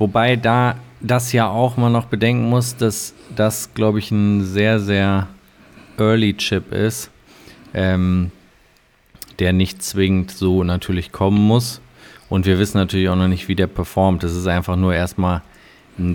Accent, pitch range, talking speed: German, 95-110 Hz, 155 wpm